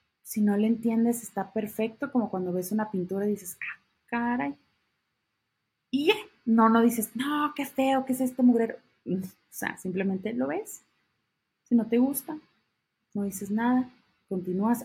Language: Spanish